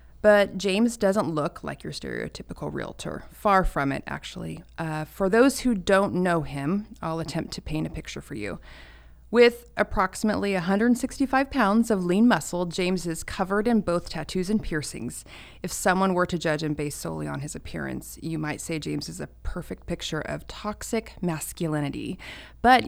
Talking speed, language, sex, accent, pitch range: 170 wpm, English, female, American, 155-195 Hz